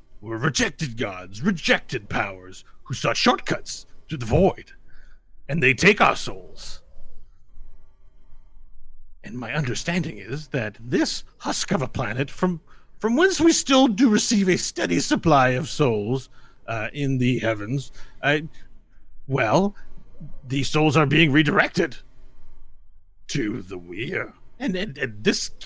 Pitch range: 115-185 Hz